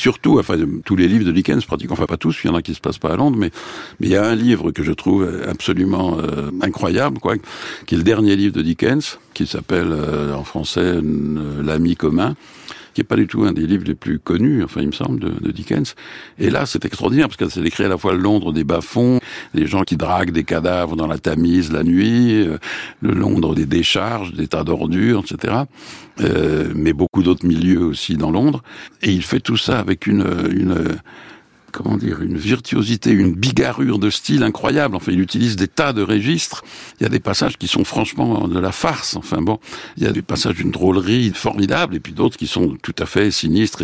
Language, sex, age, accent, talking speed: French, male, 60-79, French, 225 wpm